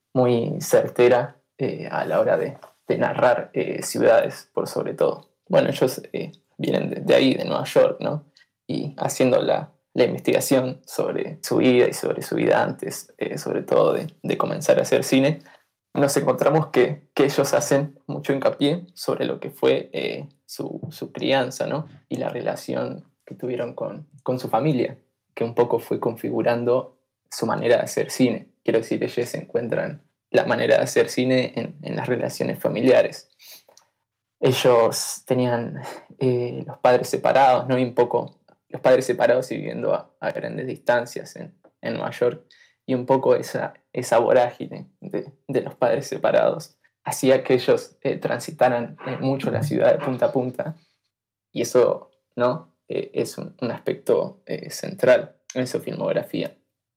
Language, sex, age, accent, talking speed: Spanish, male, 20-39, Argentinian, 165 wpm